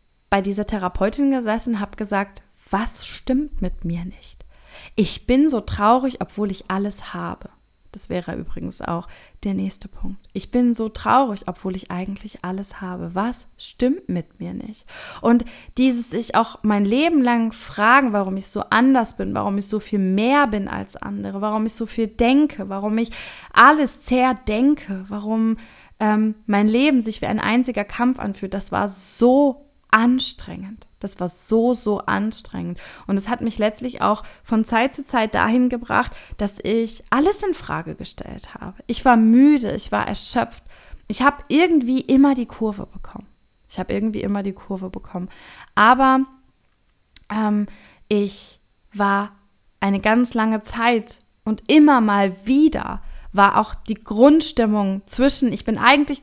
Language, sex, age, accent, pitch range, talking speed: German, female, 20-39, German, 200-250 Hz, 160 wpm